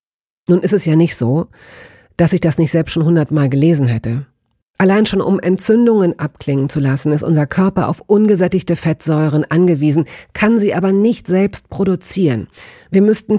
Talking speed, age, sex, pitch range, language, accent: 165 wpm, 40-59, female, 150-195 Hz, German, German